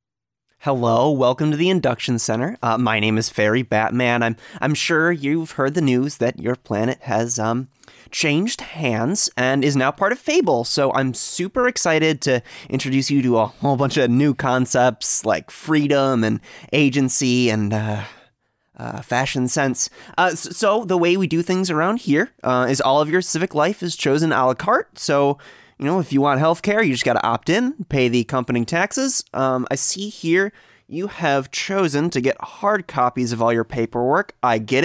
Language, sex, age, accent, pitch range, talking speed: English, male, 20-39, American, 120-160 Hz, 190 wpm